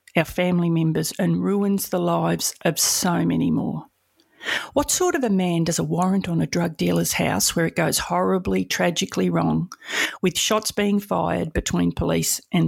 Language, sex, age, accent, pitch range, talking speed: English, female, 50-69, Australian, 165-195 Hz, 175 wpm